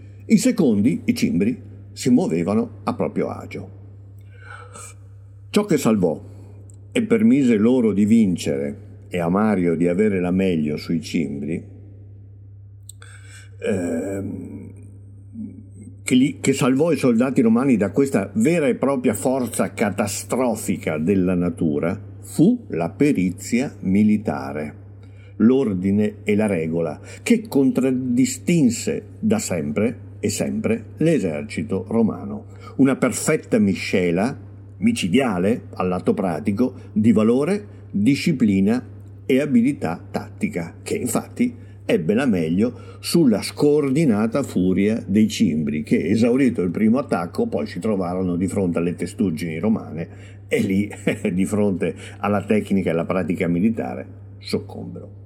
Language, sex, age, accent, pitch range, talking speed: Italian, male, 50-69, native, 95-110 Hz, 115 wpm